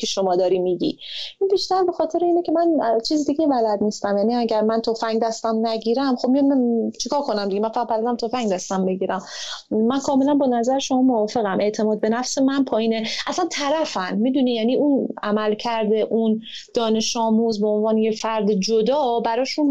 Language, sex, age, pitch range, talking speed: Persian, female, 30-49, 220-280 Hz, 175 wpm